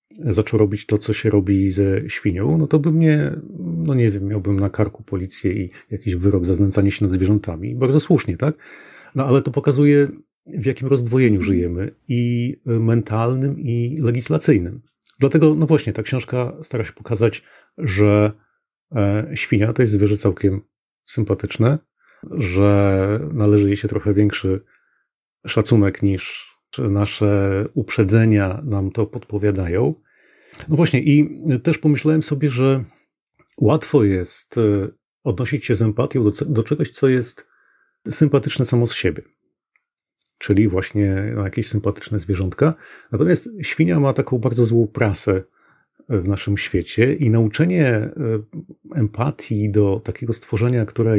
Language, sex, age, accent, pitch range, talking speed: Polish, male, 30-49, native, 100-135 Hz, 135 wpm